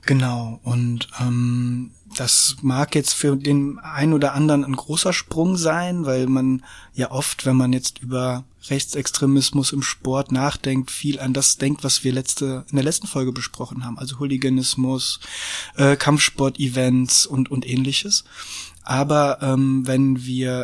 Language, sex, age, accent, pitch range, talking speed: German, male, 20-39, German, 130-145 Hz, 150 wpm